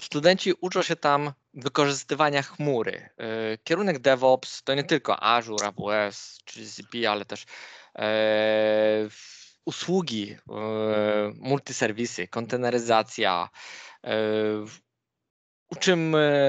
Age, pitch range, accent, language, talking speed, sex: 20-39, 125-165 Hz, native, Polish, 75 wpm, male